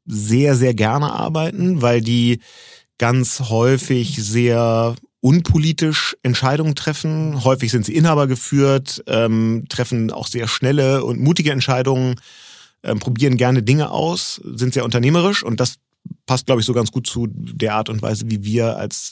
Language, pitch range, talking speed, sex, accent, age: German, 115-135 Hz, 155 wpm, male, German, 30-49